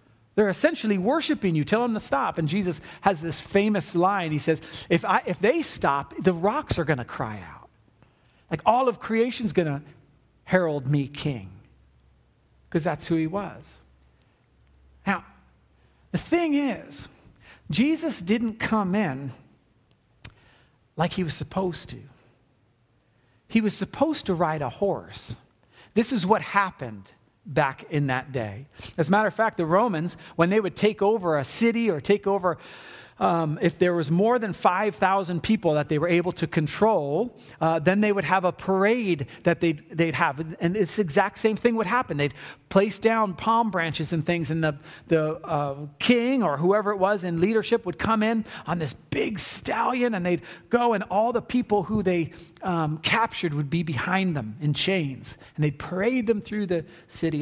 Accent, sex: American, male